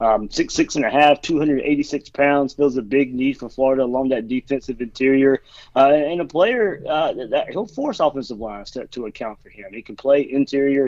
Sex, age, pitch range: male, 30-49, 125-145 Hz